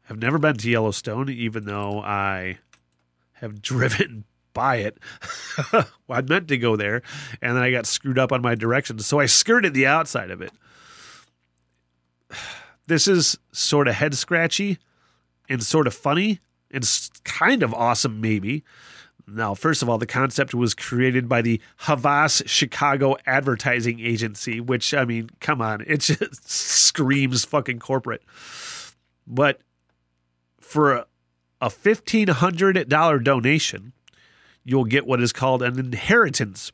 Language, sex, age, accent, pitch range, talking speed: English, male, 30-49, American, 115-150 Hz, 140 wpm